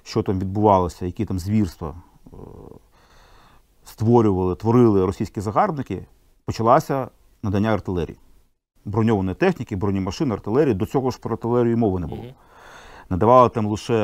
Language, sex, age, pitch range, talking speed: Ukrainian, male, 40-59, 95-120 Hz, 120 wpm